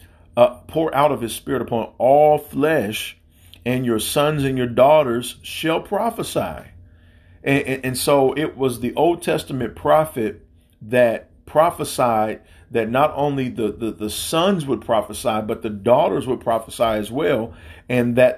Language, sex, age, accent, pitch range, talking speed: English, male, 50-69, American, 105-135 Hz, 155 wpm